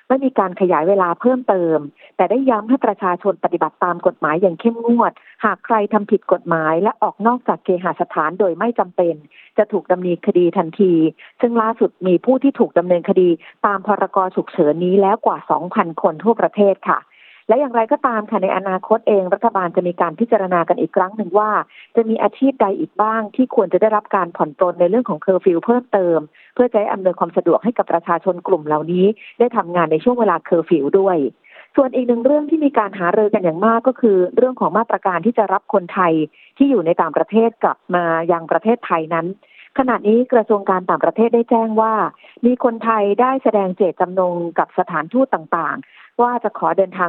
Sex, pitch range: female, 175-225 Hz